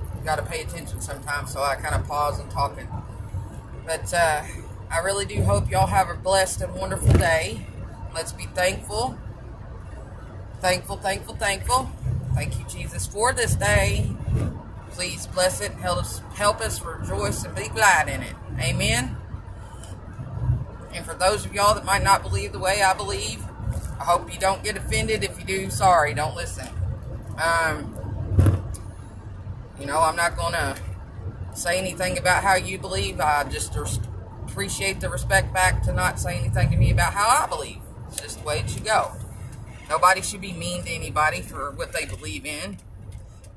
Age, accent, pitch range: 30-49, American, 95-125 Hz